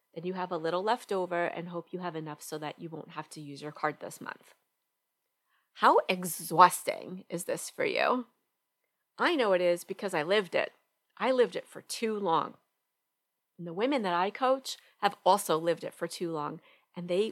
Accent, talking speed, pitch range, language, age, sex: American, 200 wpm, 175-245 Hz, English, 30-49, female